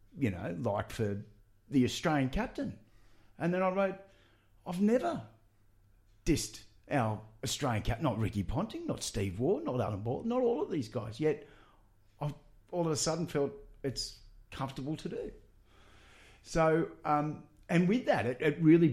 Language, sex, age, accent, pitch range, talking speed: English, male, 50-69, Australian, 110-160 Hz, 160 wpm